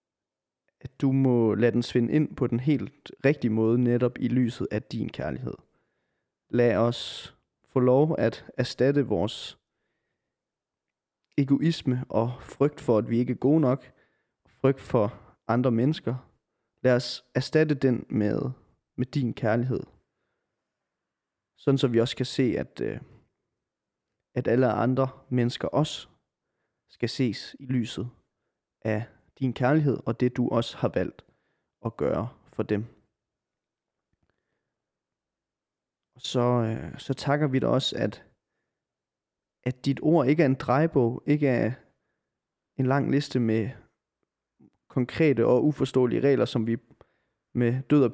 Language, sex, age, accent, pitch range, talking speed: Danish, male, 30-49, native, 115-140 Hz, 130 wpm